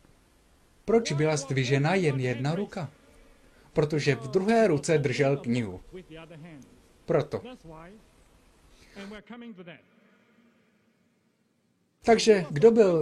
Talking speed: 75 wpm